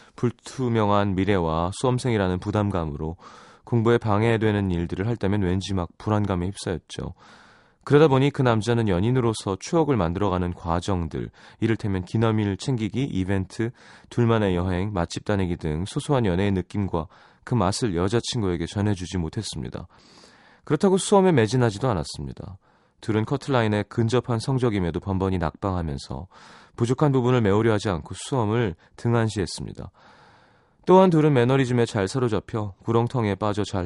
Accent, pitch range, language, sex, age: native, 95-125 Hz, Korean, male, 30-49